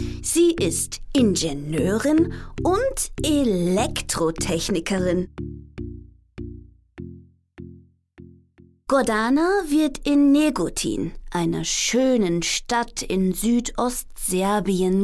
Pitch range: 195-280 Hz